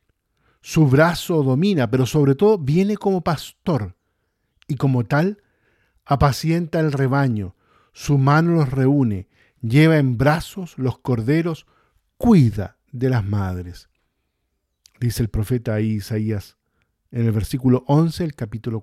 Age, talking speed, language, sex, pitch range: 50-69, 120 wpm, Spanish, male, 115-165 Hz